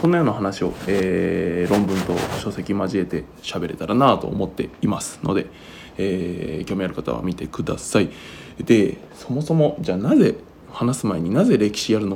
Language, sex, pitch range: Japanese, male, 90-115 Hz